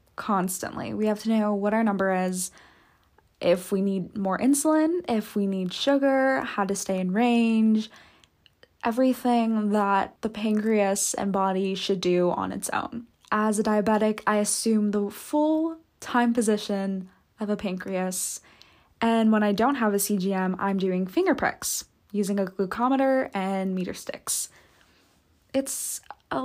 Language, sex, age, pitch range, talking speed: English, female, 10-29, 195-235 Hz, 145 wpm